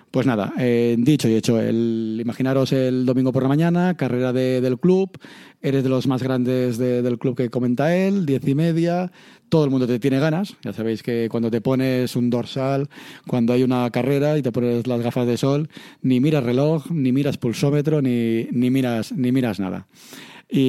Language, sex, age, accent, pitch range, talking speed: Spanish, male, 30-49, Spanish, 120-145 Hz, 200 wpm